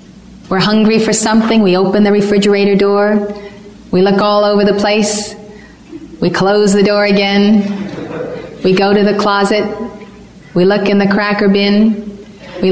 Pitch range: 180-205 Hz